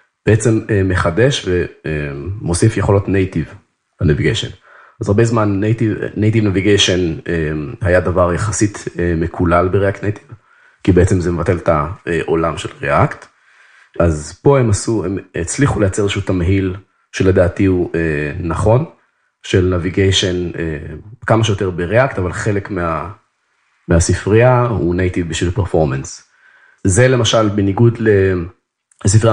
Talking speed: 115 wpm